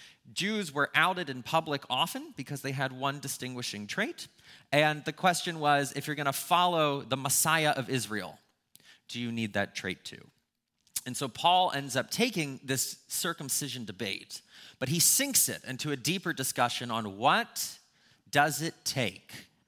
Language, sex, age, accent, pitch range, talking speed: English, male, 30-49, American, 120-165 Hz, 160 wpm